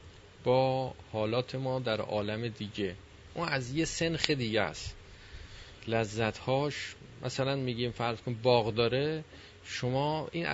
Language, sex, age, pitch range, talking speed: Persian, male, 30-49, 105-135 Hz, 125 wpm